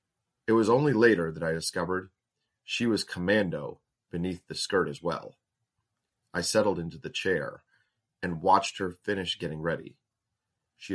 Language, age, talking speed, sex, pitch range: English, 30-49, 150 wpm, male, 85-115 Hz